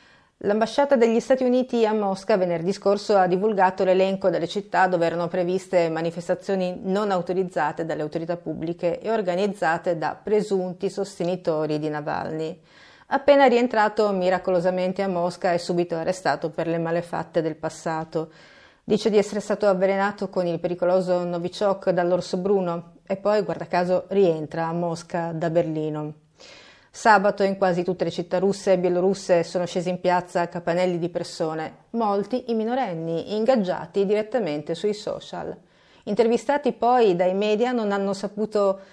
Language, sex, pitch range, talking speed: Italian, female, 170-205 Hz, 140 wpm